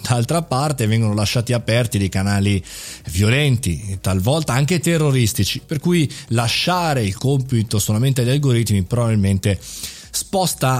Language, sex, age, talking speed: Italian, male, 30-49, 115 wpm